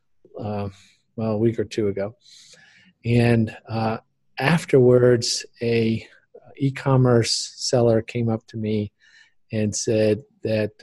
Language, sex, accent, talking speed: English, male, American, 110 wpm